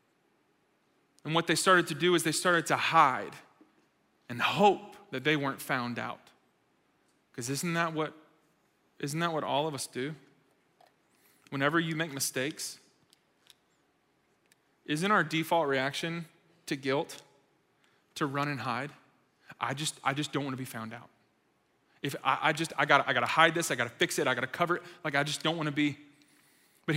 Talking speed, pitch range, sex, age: 180 wpm, 145-175 Hz, male, 20-39